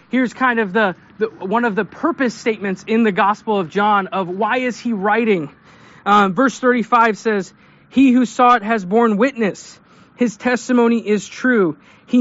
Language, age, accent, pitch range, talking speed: English, 20-39, American, 205-245 Hz, 175 wpm